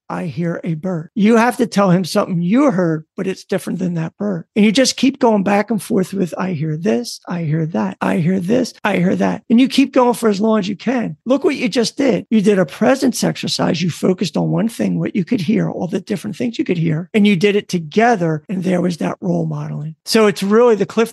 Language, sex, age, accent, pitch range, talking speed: English, male, 50-69, American, 180-225 Hz, 260 wpm